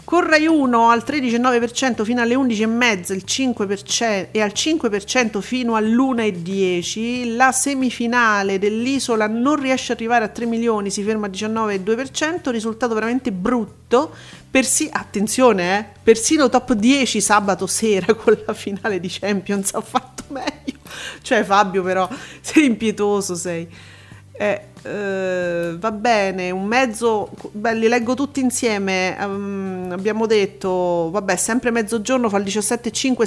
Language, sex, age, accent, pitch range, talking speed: Italian, female, 40-59, native, 195-245 Hz, 130 wpm